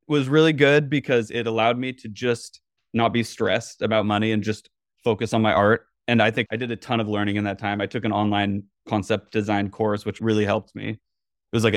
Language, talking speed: English, 235 wpm